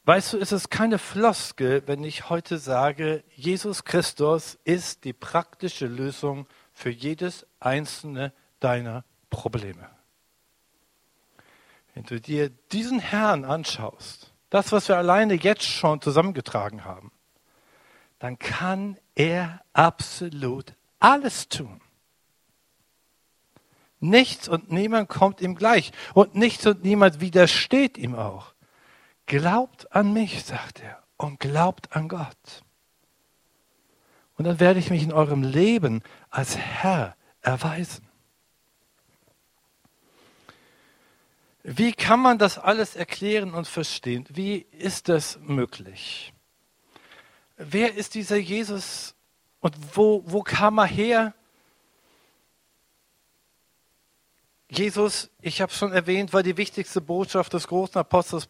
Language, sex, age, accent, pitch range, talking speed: German, male, 60-79, German, 140-200 Hz, 110 wpm